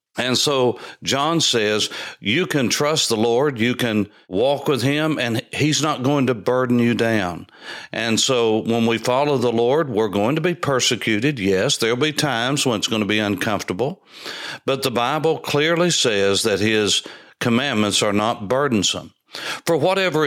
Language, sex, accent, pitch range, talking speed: English, male, American, 105-135 Hz, 170 wpm